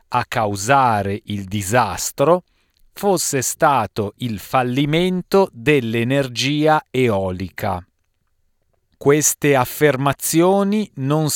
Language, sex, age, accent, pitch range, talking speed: Italian, male, 40-59, native, 105-145 Hz, 70 wpm